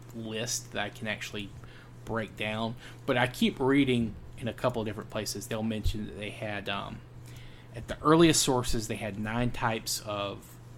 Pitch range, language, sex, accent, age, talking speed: 110-120 Hz, English, male, American, 20-39, 180 wpm